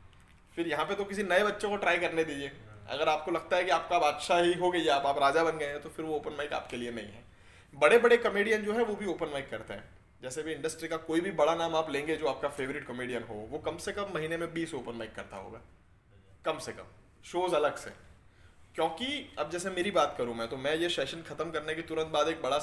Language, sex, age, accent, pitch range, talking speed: Hindi, male, 20-39, native, 115-175 Hz, 260 wpm